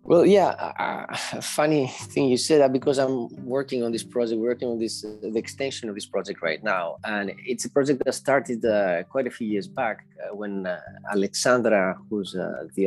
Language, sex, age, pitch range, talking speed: Greek, male, 20-39, 105-130 Hz, 205 wpm